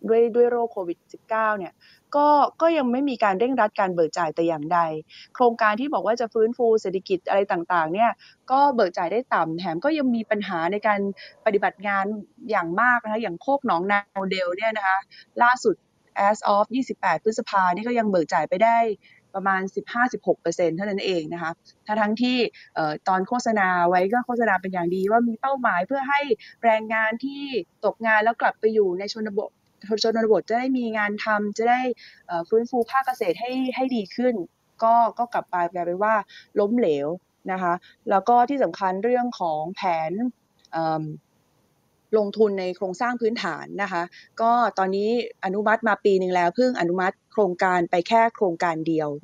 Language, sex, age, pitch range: Thai, female, 20-39, 180-235 Hz